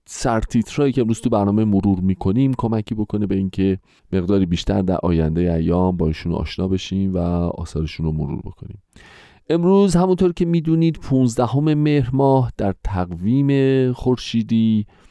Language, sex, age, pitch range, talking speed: Persian, male, 30-49, 90-115 Hz, 130 wpm